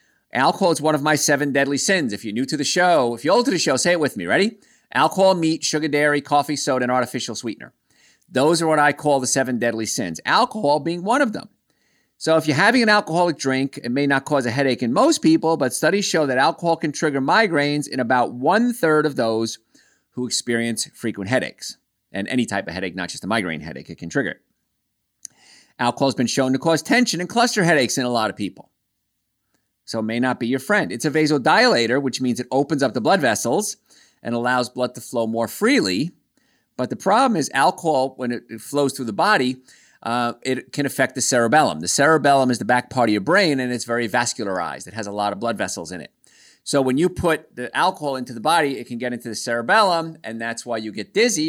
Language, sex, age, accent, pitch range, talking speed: English, male, 50-69, American, 120-155 Hz, 230 wpm